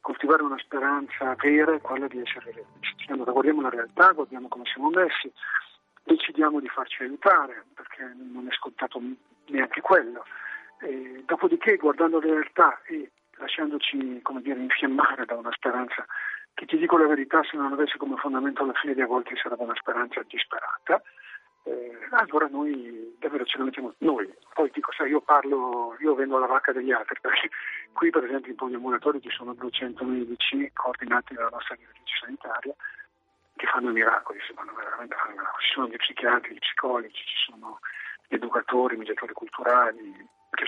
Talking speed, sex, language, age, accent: 165 wpm, male, Italian, 40-59, native